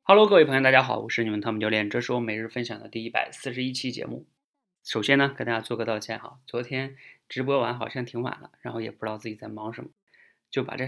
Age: 20-39